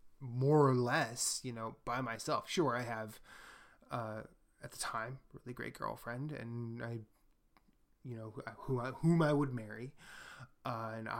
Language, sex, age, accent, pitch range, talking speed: English, male, 20-39, American, 115-135 Hz, 165 wpm